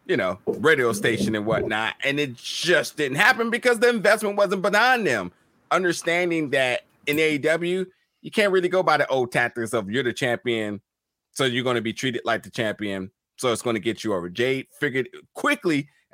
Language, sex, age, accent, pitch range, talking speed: English, male, 30-49, American, 120-165 Hz, 195 wpm